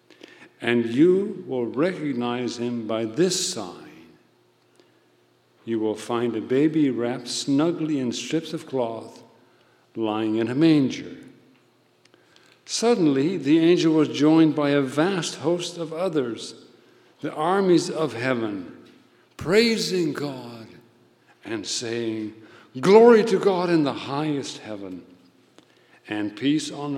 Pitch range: 115-155 Hz